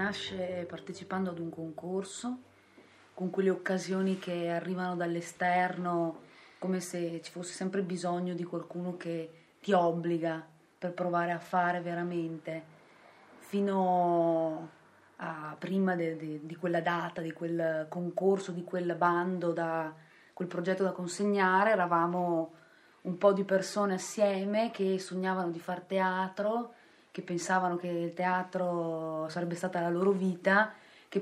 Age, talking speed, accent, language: 30-49, 130 wpm, native, Italian